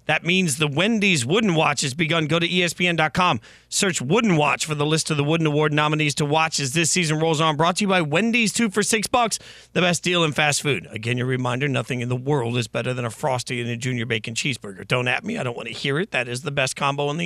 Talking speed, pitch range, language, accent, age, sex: 270 wpm, 130-175 Hz, English, American, 40-59, male